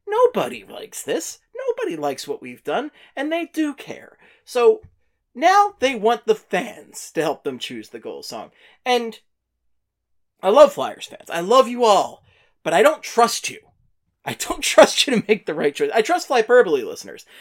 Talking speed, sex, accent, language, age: 180 wpm, male, American, English, 30-49